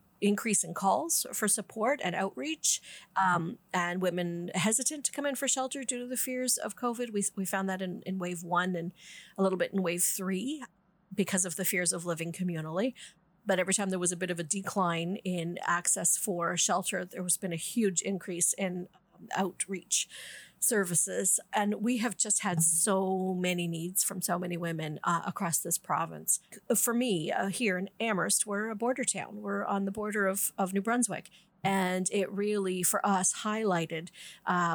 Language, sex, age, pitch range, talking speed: English, female, 40-59, 180-210 Hz, 190 wpm